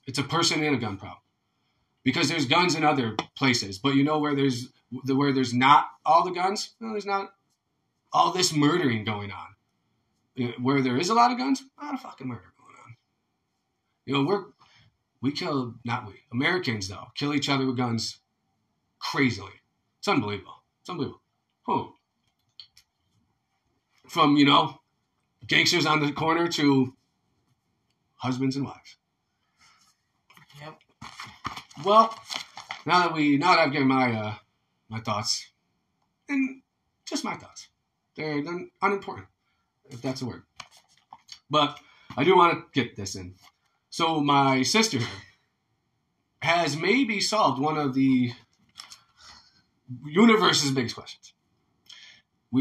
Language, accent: English, American